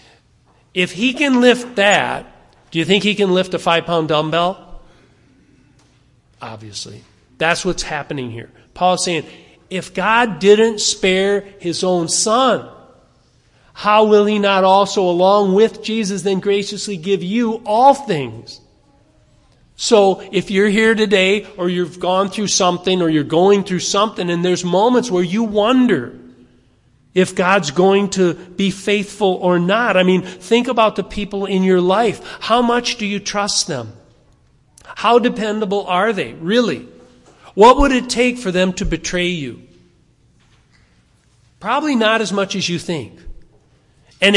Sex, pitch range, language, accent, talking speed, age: male, 170-210 Hz, English, American, 145 wpm, 40-59